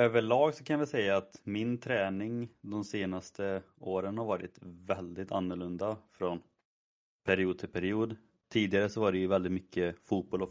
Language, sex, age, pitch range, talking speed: Swedish, male, 30-49, 95-110 Hz, 160 wpm